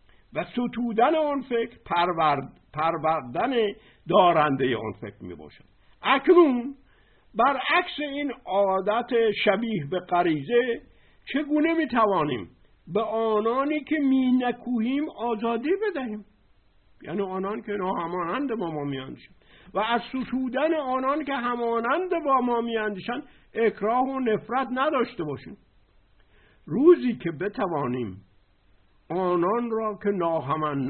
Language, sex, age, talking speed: Persian, male, 60-79, 110 wpm